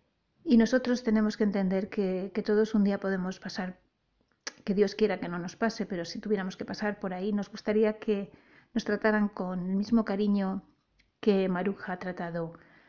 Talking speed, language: 180 wpm, Spanish